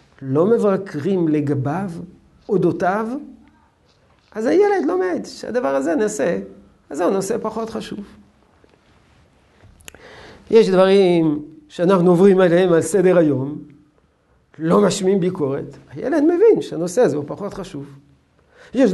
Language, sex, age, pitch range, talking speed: Hebrew, male, 50-69, 145-230 Hz, 110 wpm